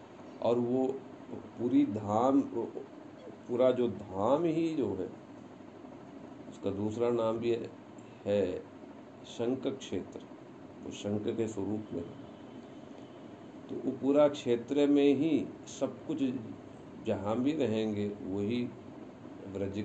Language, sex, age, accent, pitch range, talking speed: Hindi, male, 50-69, native, 110-145 Hz, 105 wpm